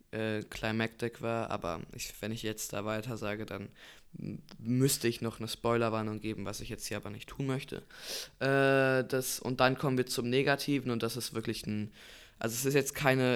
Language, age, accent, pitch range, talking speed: German, 20-39, German, 110-125 Hz, 195 wpm